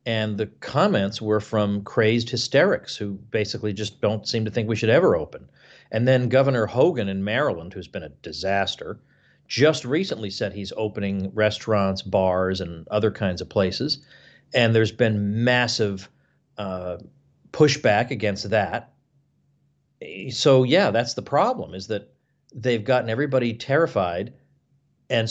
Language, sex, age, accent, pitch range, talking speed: English, male, 40-59, American, 100-130 Hz, 140 wpm